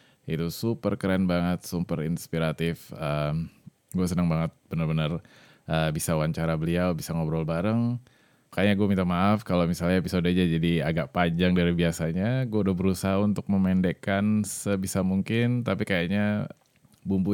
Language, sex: Indonesian, male